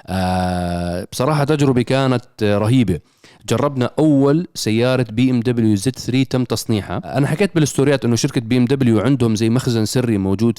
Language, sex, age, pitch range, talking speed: Arabic, male, 30-49, 110-140 Hz, 165 wpm